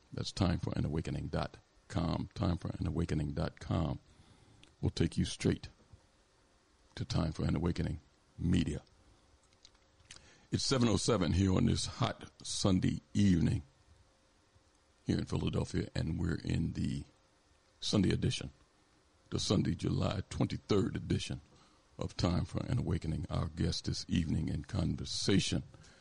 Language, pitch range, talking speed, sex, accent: English, 75-100 Hz, 105 wpm, male, American